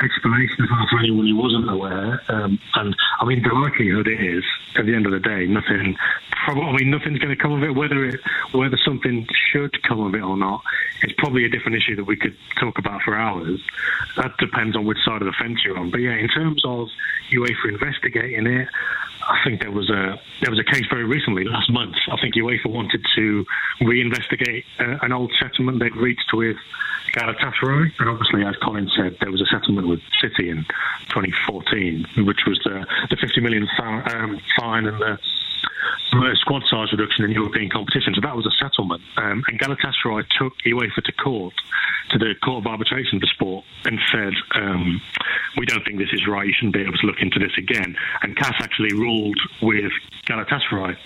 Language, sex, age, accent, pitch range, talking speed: English, male, 30-49, British, 105-125 Hz, 195 wpm